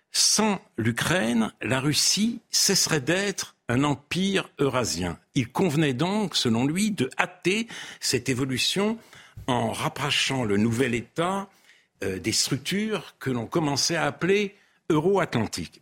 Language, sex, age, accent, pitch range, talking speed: French, male, 60-79, French, 125-195 Hz, 120 wpm